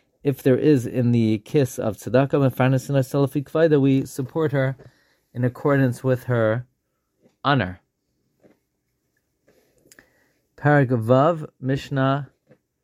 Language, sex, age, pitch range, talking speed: English, male, 30-49, 120-140 Hz, 90 wpm